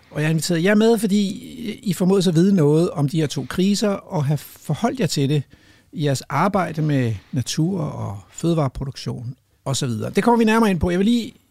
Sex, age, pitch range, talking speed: male, 60-79, 140-195 Hz, 220 wpm